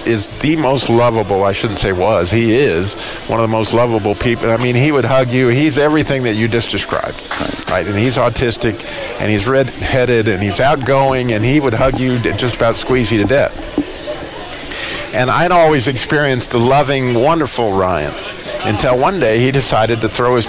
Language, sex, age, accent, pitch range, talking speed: English, male, 50-69, American, 110-135 Hz, 190 wpm